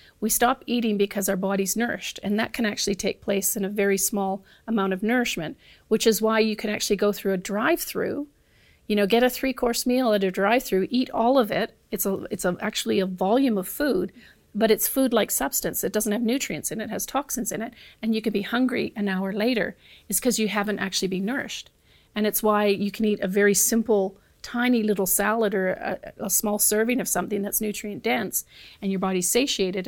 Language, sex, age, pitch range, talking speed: English, female, 40-59, 195-230 Hz, 225 wpm